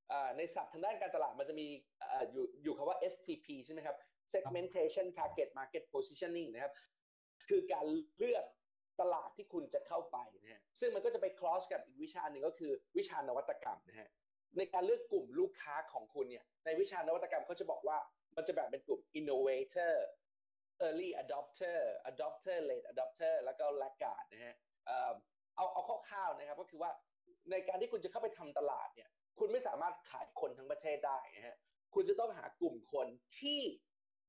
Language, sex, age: Thai, male, 30-49